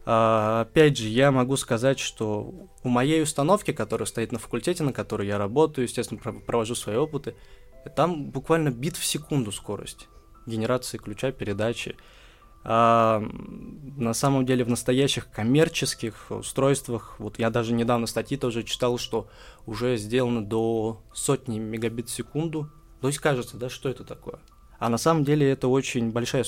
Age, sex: 20-39, male